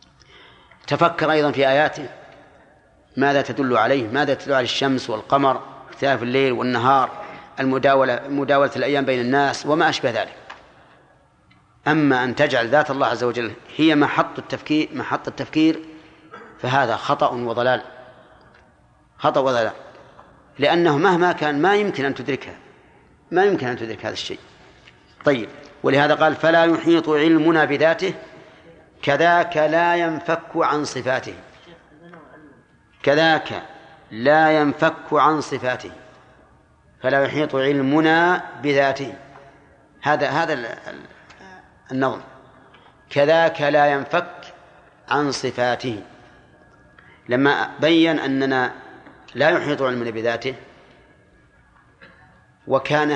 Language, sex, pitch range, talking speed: Arabic, male, 130-155 Hz, 100 wpm